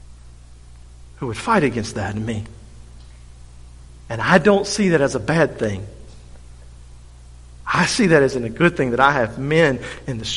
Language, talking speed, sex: English, 170 wpm, male